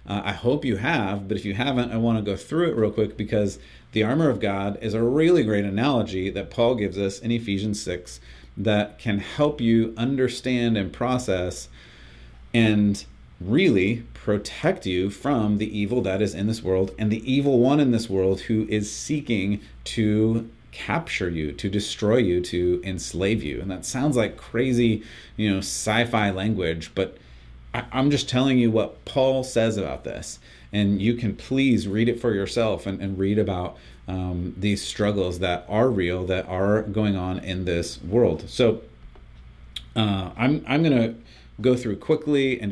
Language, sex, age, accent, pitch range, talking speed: English, male, 30-49, American, 95-115 Hz, 175 wpm